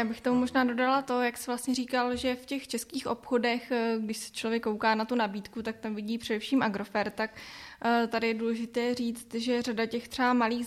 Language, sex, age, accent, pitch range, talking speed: Czech, female, 20-39, native, 210-230 Hz, 210 wpm